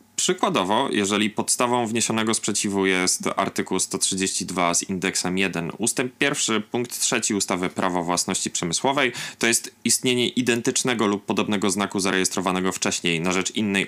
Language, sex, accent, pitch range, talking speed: Polish, male, native, 100-140 Hz, 135 wpm